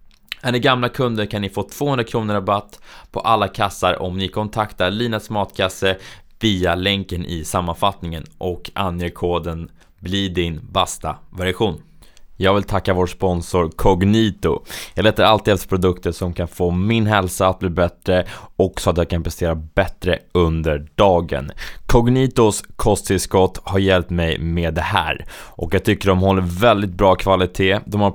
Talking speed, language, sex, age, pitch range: 160 wpm, Swedish, male, 20-39, 90-105 Hz